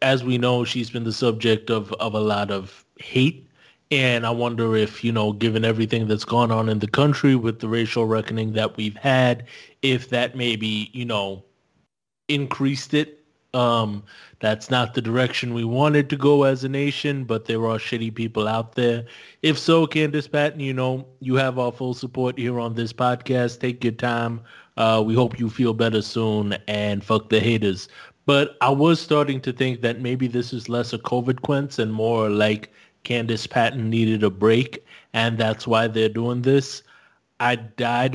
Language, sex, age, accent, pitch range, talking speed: English, male, 20-39, American, 110-130 Hz, 185 wpm